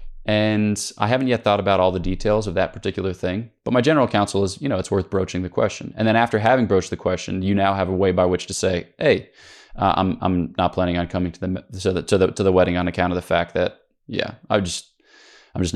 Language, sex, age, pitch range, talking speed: English, male, 20-39, 90-110 Hz, 265 wpm